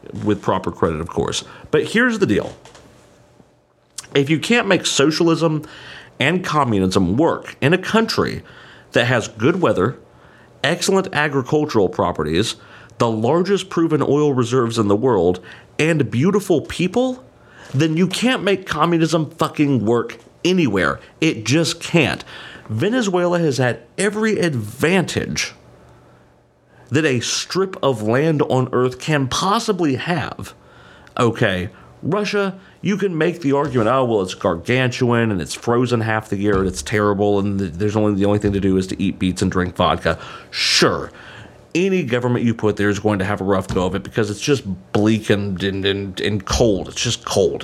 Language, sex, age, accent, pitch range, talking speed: English, male, 40-59, American, 105-160 Hz, 160 wpm